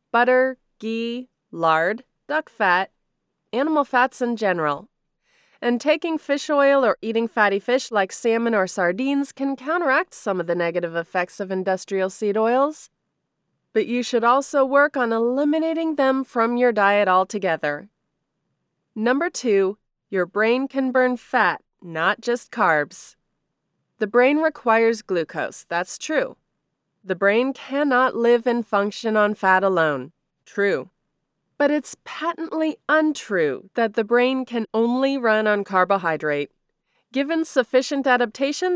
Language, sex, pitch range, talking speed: English, female, 200-270 Hz, 130 wpm